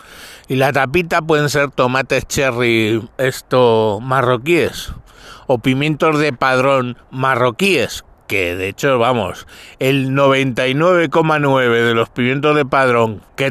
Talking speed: 115 wpm